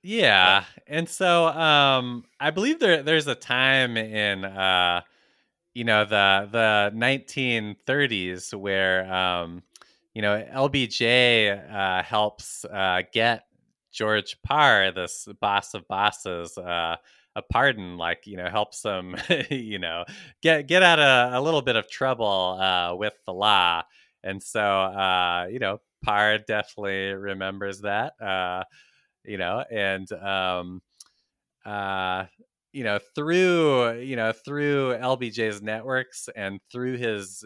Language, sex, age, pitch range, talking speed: English, male, 20-39, 95-125 Hz, 130 wpm